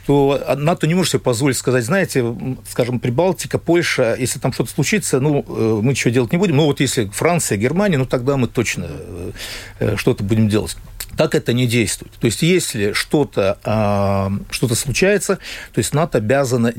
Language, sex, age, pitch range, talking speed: Russian, male, 50-69, 105-140 Hz, 170 wpm